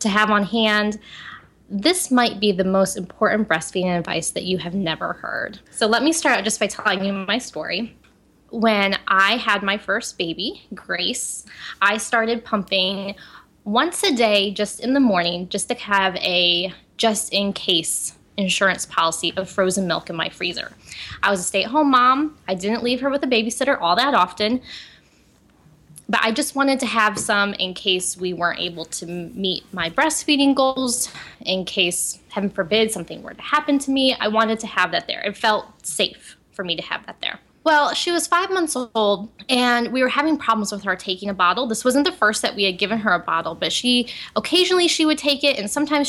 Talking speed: 195 wpm